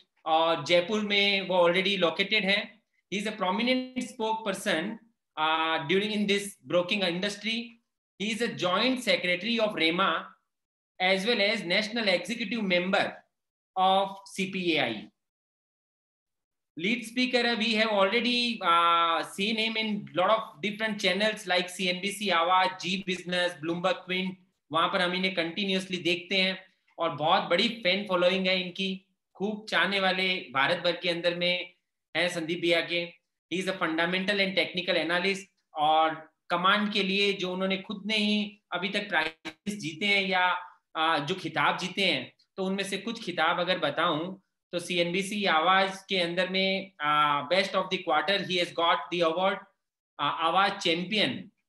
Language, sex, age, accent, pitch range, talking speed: Tamil, male, 30-49, native, 175-200 Hz, 80 wpm